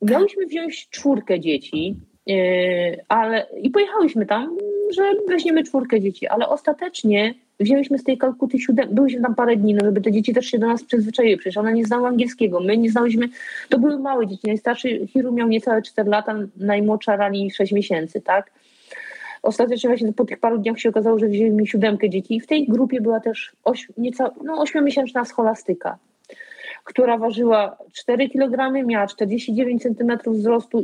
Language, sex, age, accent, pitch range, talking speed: Polish, female, 30-49, native, 210-255 Hz, 170 wpm